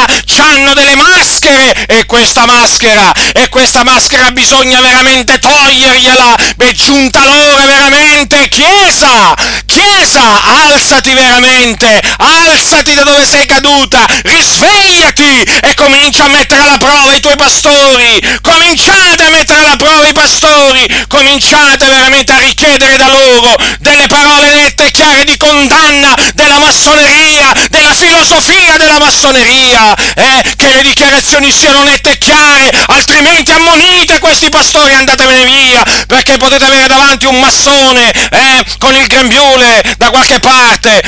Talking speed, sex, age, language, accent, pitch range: 125 wpm, male, 40-59, Italian, native, 255-290 Hz